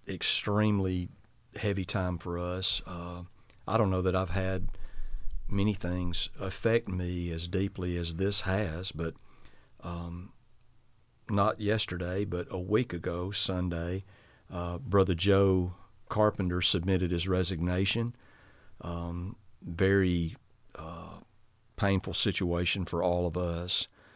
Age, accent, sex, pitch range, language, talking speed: 50-69, American, male, 90-105 Hz, English, 115 wpm